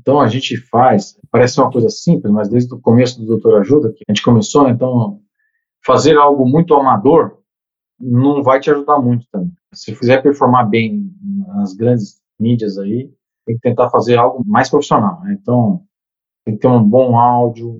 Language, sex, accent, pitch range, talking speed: Portuguese, male, Brazilian, 120-160 Hz, 185 wpm